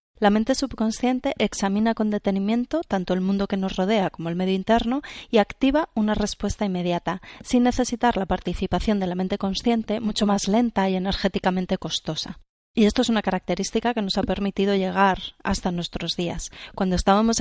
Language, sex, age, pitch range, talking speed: Spanish, female, 30-49, 185-225 Hz, 170 wpm